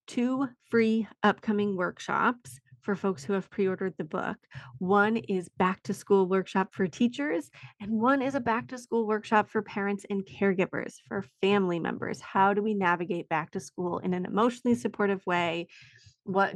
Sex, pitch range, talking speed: female, 180-205 Hz, 170 wpm